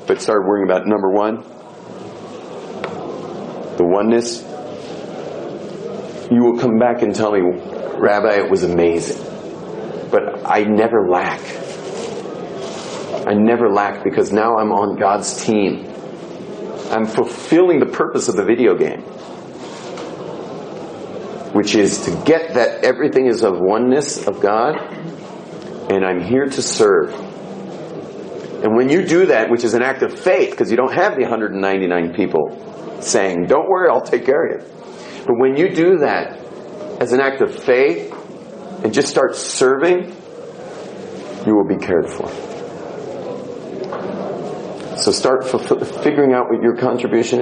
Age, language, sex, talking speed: 40-59, English, male, 135 wpm